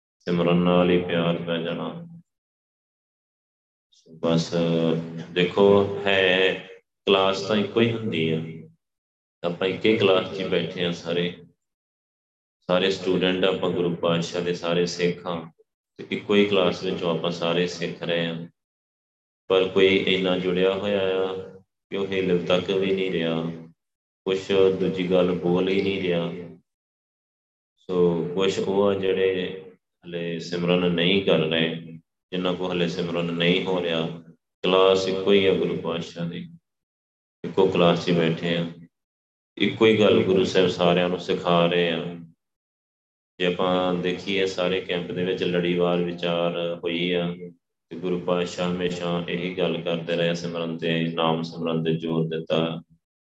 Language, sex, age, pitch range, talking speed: Punjabi, male, 30-49, 85-95 Hz, 140 wpm